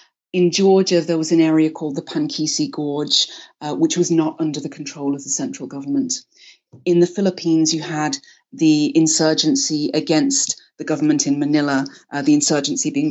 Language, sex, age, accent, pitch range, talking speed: English, female, 30-49, British, 150-185 Hz, 170 wpm